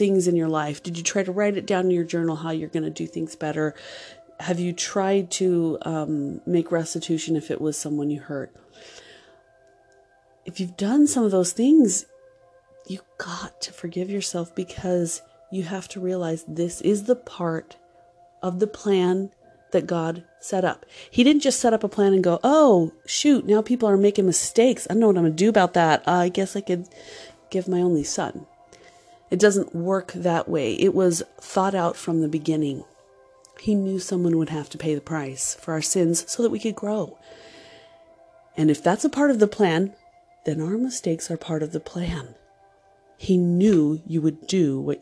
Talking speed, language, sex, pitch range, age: 195 wpm, English, female, 155-195 Hz, 30-49